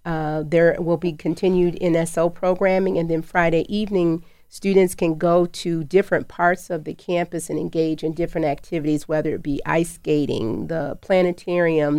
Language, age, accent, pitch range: English, 40-59, American, 155-175 Hz